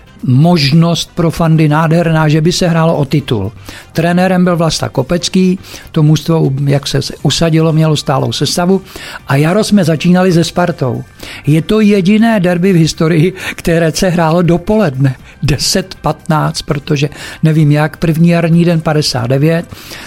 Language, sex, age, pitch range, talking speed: Czech, male, 60-79, 145-170 Hz, 140 wpm